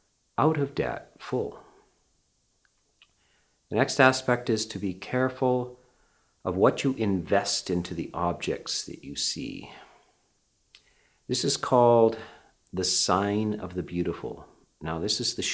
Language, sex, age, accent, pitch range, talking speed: English, male, 50-69, American, 95-135 Hz, 125 wpm